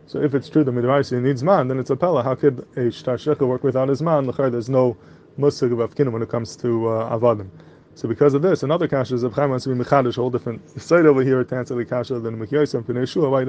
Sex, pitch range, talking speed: male, 120-140 Hz, 265 wpm